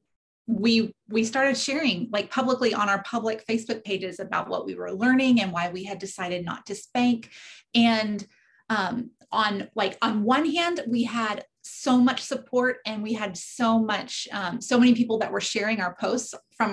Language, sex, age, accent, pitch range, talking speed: English, female, 30-49, American, 205-240 Hz, 185 wpm